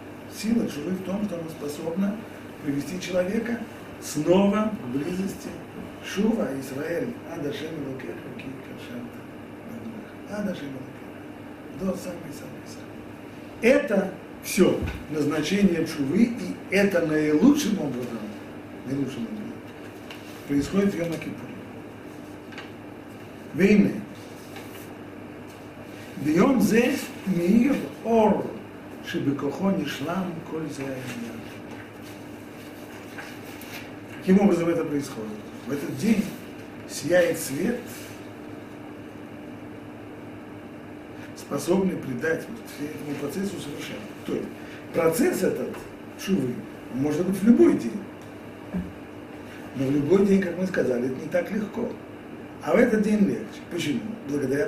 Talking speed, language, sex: 100 wpm, Russian, male